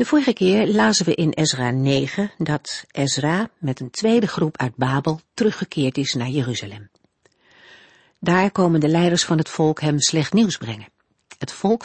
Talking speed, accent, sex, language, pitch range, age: 165 wpm, Dutch, female, Dutch, 135-185 Hz, 60-79